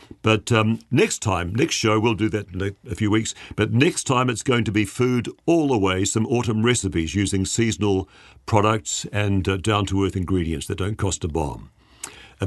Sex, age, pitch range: male, 50-69, 100-120 Hz